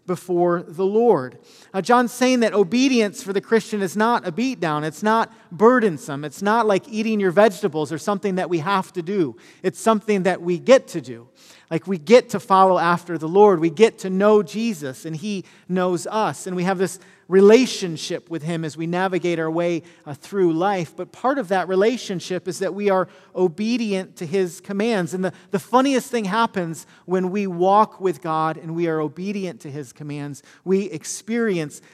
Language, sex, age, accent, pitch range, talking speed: English, male, 40-59, American, 150-200 Hz, 195 wpm